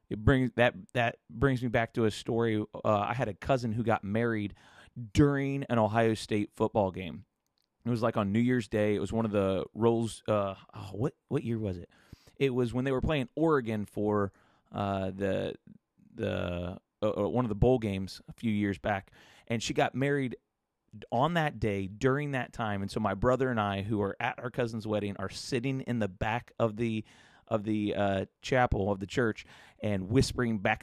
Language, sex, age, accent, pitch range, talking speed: English, male, 30-49, American, 100-125 Hz, 200 wpm